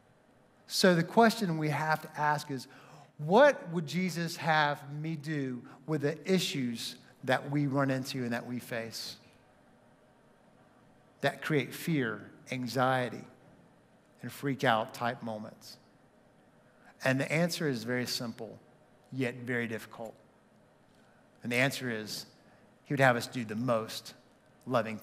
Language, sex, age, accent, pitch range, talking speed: English, male, 50-69, American, 130-200 Hz, 130 wpm